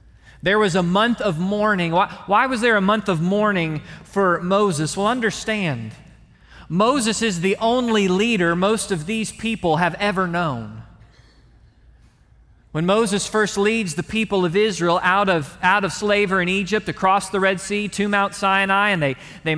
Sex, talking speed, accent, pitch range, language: male, 170 wpm, American, 170-210 Hz, English